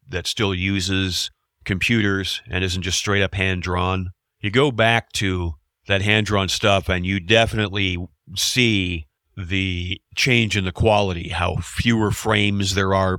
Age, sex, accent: 40-59, male, American